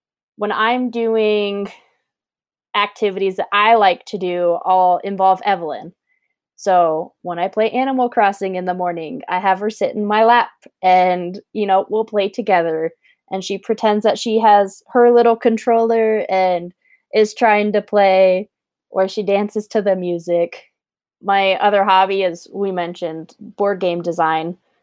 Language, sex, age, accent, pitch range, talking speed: English, female, 20-39, American, 180-215 Hz, 150 wpm